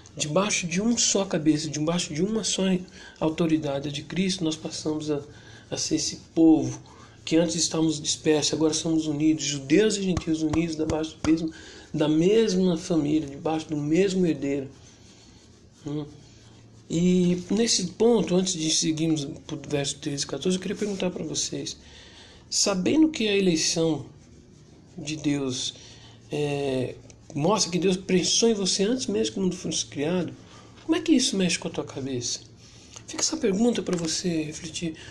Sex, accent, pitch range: male, Brazilian, 145-195 Hz